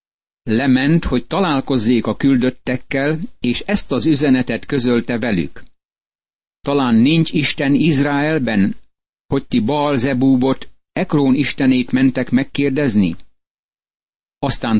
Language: Hungarian